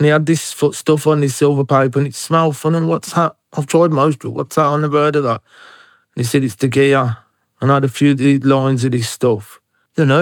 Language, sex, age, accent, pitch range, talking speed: English, male, 30-49, British, 125-155 Hz, 270 wpm